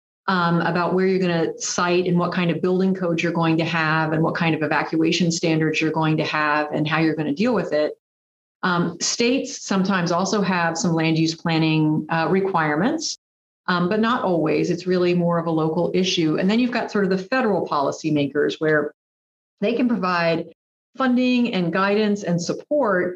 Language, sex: English, female